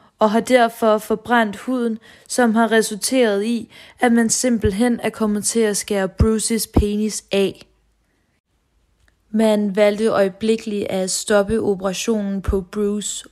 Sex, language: female, Danish